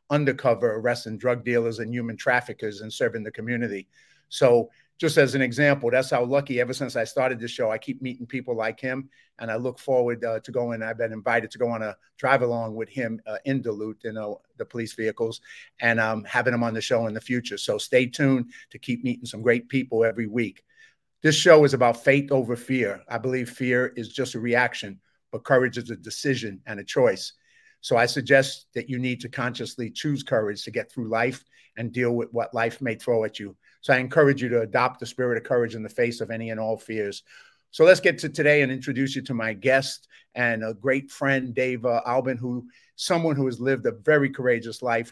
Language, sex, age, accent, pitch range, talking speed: English, male, 50-69, American, 115-130 Hz, 220 wpm